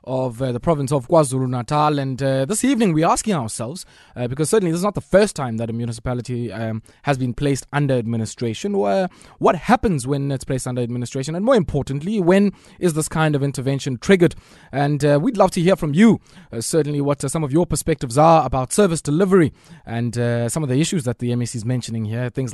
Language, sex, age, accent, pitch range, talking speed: English, male, 20-39, South African, 130-165 Hz, 220 wpm